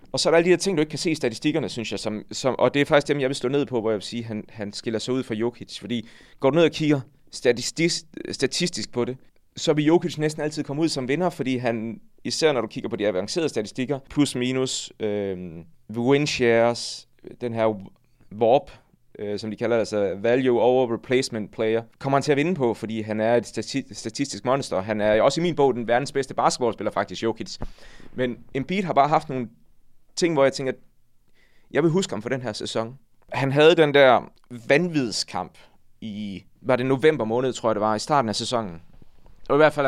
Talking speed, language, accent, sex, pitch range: 225 wpm, Danish, native, male, 110-140 Hz